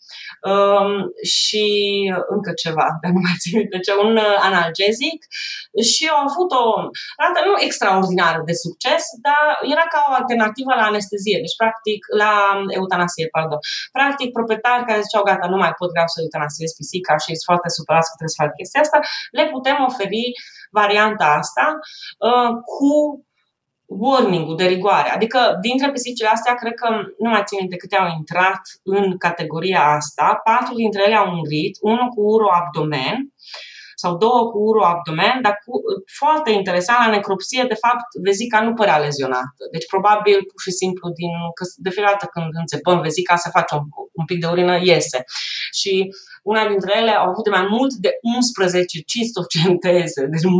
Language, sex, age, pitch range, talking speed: Romanian, female, 20-39, 175-230 Hz, 165 wpm